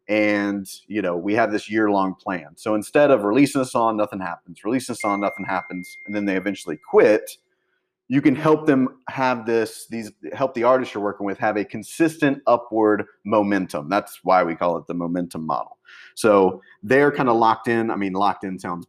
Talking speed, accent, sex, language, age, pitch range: 205 wpm, American, male, English, 30-49, 95-120 Hz